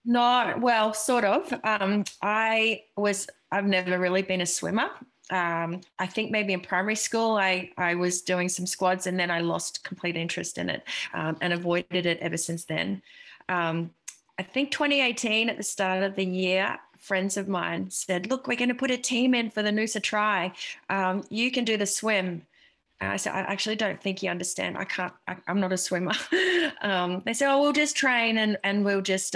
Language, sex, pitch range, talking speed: English, female, 175-220 Hz, 205 wpm